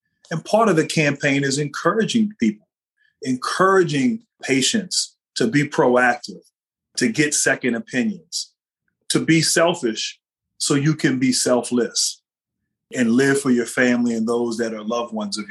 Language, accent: English, American